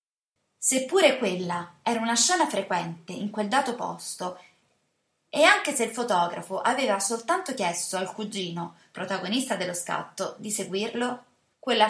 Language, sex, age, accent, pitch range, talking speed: Italian, female, 20-39, native, 195-260 Hz, 130 wpm